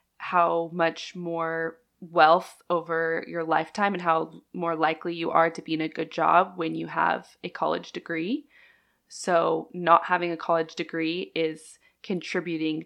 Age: 20-39